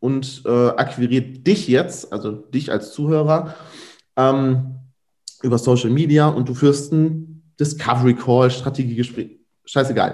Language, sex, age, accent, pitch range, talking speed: German, male, 30-49, German, 120-160 Hz, 125 wpm